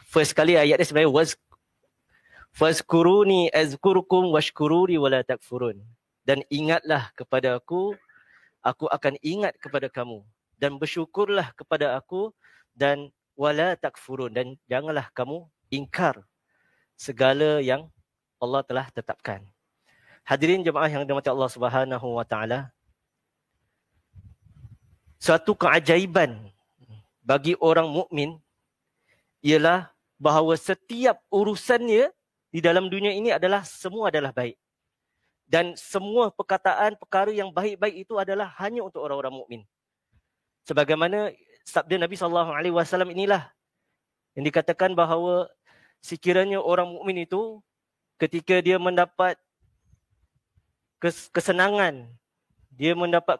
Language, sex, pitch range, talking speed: Malay, male, 130-185 Hz, 100 wpm